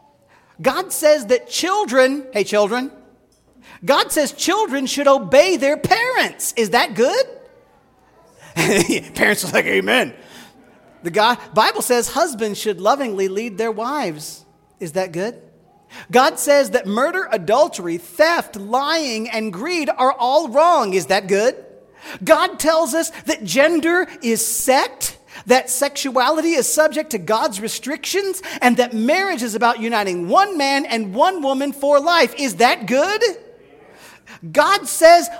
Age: 40-59